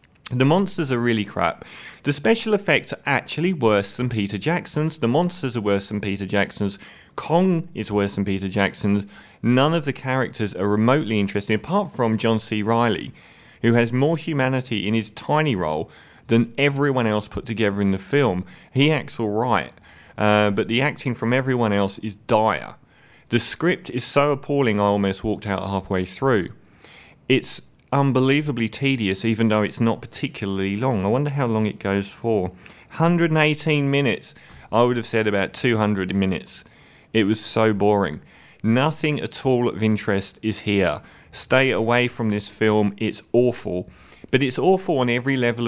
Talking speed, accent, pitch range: 170 wpm, British, 100-130 Hz